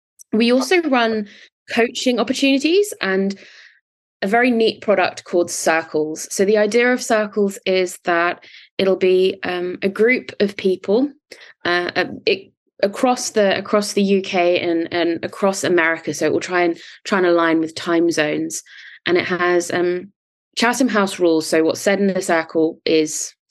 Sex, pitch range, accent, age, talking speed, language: female, 175-225 Hz, British, 20-39, 160 wpm, English